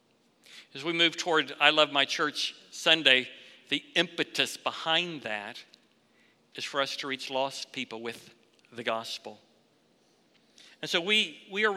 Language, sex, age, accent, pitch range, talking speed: English, male, 50-69, American, 145-205 Hz, 145 wpm